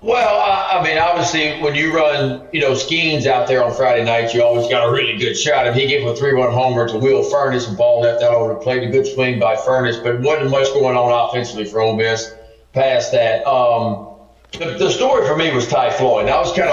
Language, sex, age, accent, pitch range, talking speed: English, male, 40-59, American, 120-155 Hz, 240 wpm